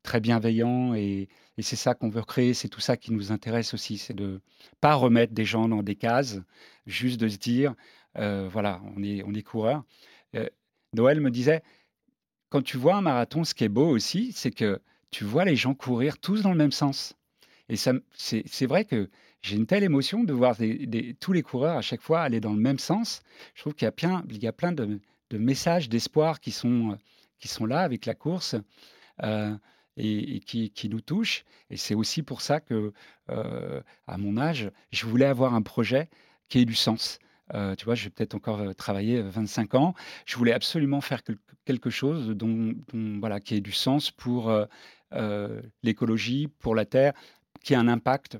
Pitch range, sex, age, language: 110-135 Hz, male, 40-59, French